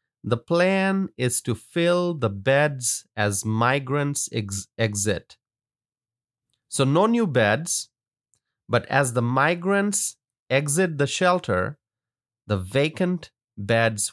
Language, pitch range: English, 115-145 Hz